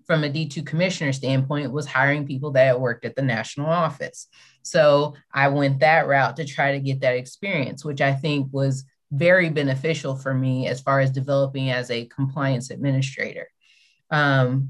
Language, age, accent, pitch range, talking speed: English, 20-39, American, 135-155 Hz, 170 wpm